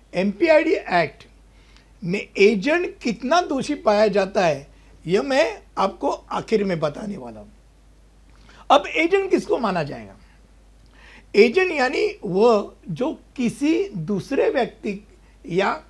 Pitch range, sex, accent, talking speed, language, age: 200-290 Hz, male, native, 115 wpm, Hindi, 60-79